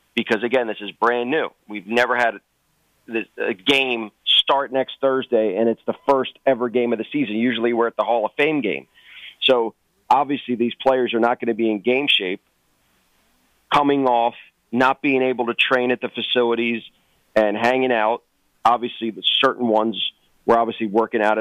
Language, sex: English, male